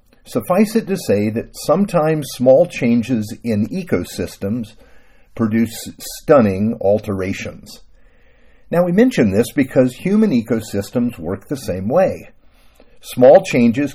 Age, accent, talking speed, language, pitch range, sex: 50-69, American, 110 wpm, English, 110-175 Hz, male